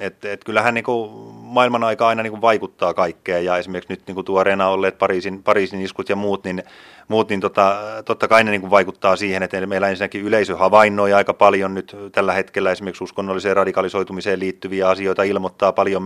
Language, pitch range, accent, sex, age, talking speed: Finnish, 95-105 Hz, native, male, 30-49, 185 wpm